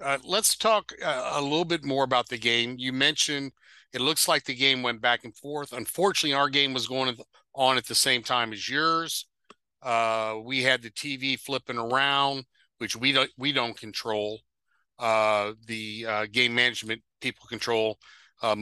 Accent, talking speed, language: American, 175 wpm, English